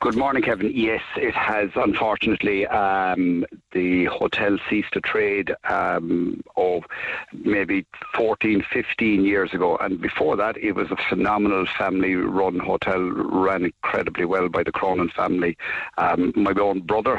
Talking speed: 145 wpm